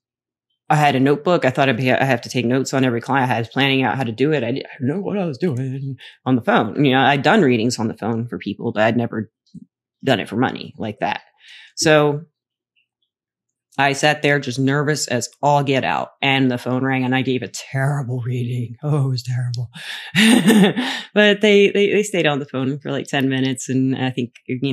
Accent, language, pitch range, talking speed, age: American, English, 120-145 Hz, 225 wpm, 30-49